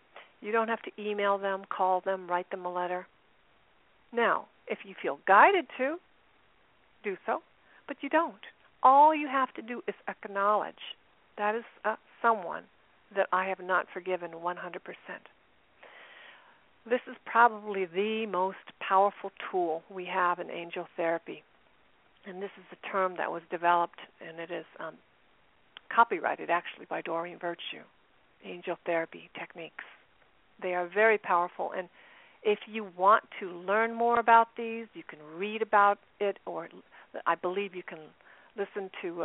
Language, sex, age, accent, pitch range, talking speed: English, female, 50-69, American, 180-225 Hz, 150 wpm